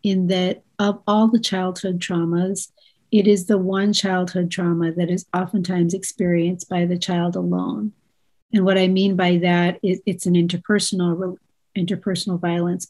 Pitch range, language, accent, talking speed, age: 175-195 Hz, English, American, 155 wpm, 40-59